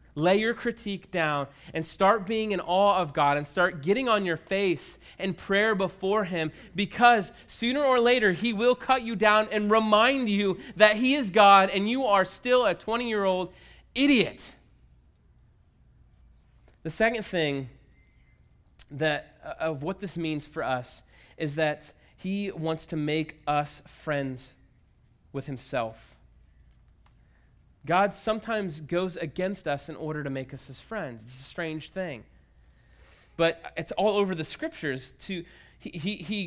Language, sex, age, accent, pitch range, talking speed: English, male, 20-39, American, 155-240 Hz, 145 wpm